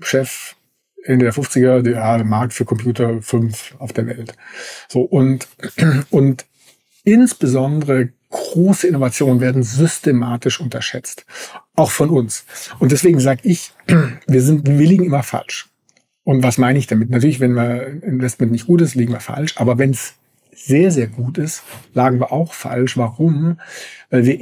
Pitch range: 125-150 Hz